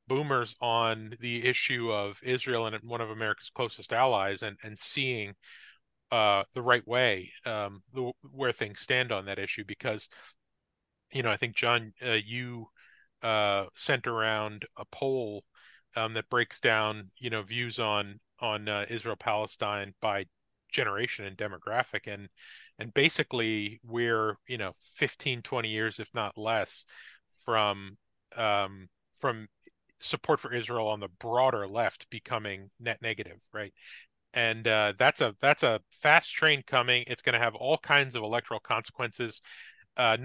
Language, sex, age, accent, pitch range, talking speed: English, male, 30-49, American, 105-125 Hz, 150 wpm